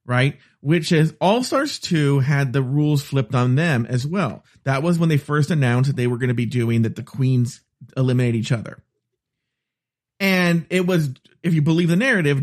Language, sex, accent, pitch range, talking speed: English, male, American, 130-185 Hz, 195 wpm